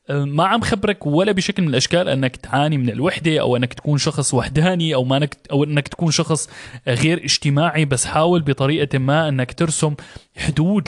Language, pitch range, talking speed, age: Arabic, 130-160 Hz, 175 wpm, 20-39